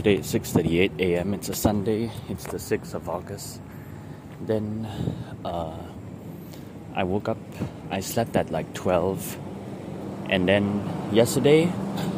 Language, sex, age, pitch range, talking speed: English, male, 20-39, 90-115 Hz, 120 wpm